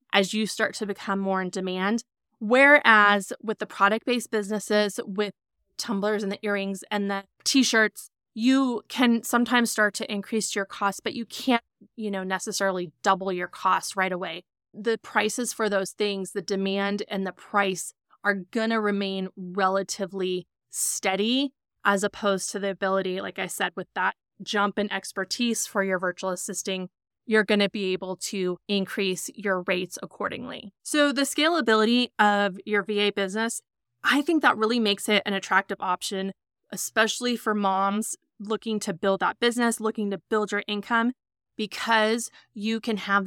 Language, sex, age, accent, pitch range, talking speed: English, female, 20-39, American, 195-220 Hz, 160 wpm